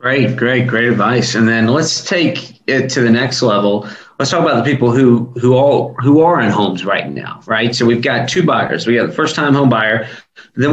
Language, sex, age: English, male, 30-49